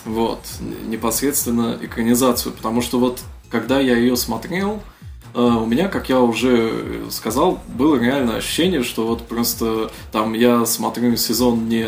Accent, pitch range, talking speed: native, 115-125 Hz, 135 wpm